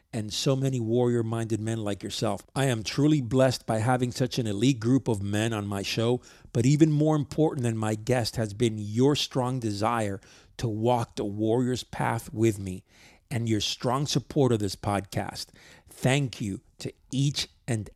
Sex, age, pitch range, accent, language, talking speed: male, 40-59, 105-130 Hz, American, English, 180 wpm